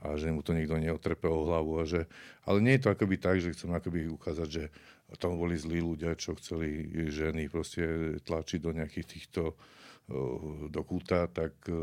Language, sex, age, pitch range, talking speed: Slovak, male, 50-69, 80-90 Hz, 175 wpm